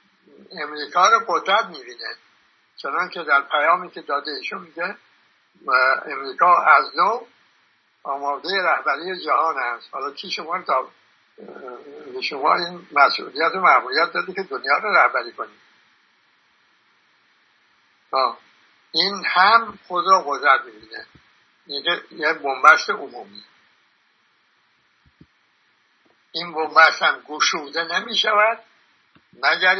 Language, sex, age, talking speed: Persian, male, 60-79, 105 wpm